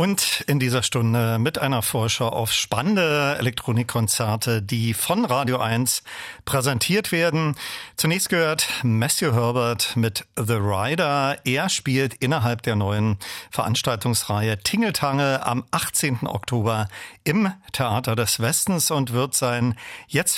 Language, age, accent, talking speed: German, 50-69, German, 120 wpm